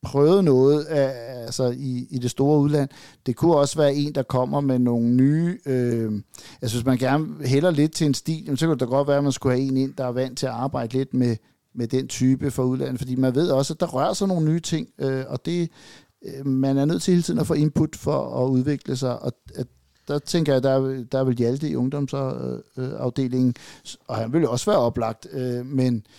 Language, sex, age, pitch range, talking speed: Danish, male, 60-79, 120-140 Hz, 230 wpm